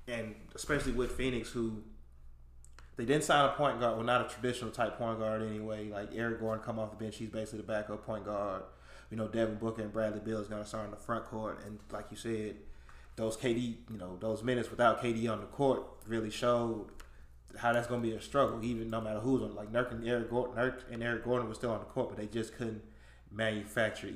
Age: 20-39